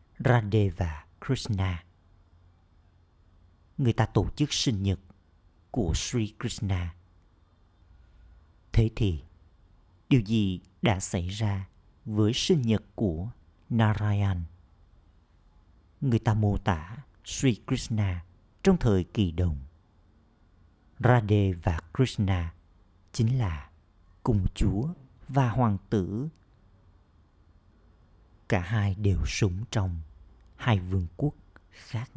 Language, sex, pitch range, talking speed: Vietnamese, male, 85-110 Hz, 95 wpm